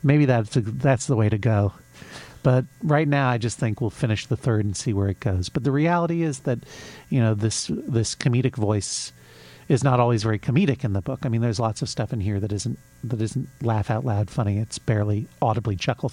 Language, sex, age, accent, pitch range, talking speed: English, male, 40-59, American, 105-130 Hz, 225 wpm